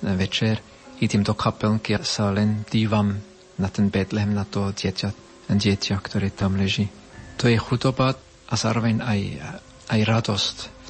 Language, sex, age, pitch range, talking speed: Slovak, male, 40-59, 100-115 Hz, 145 wpm